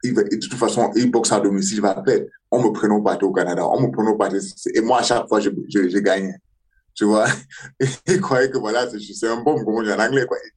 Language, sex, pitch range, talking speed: French, male, 105-165 Hz, 255 wpm